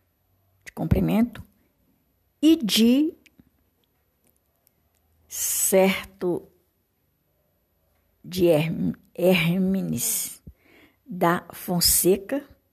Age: 60-79